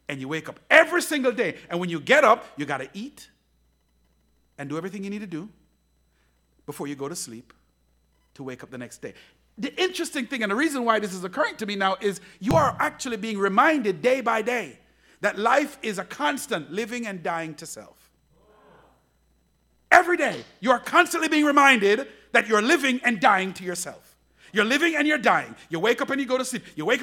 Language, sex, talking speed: English, male, 210 wpm